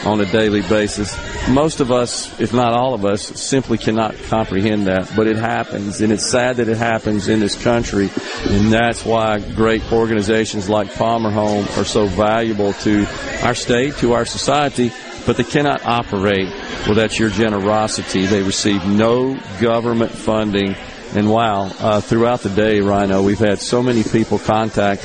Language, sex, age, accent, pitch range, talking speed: English, male, 50-69, American, 105-115 Hz, 170 wpm